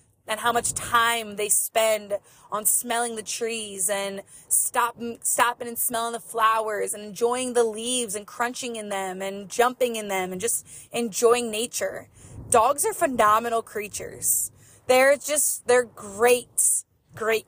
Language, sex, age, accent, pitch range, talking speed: English, female, 20-39, American, 205-255 Hz, 145 wpm